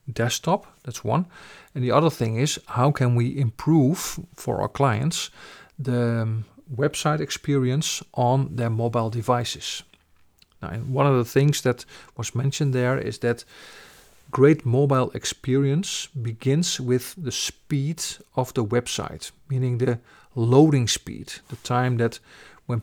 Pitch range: 115-135 Hz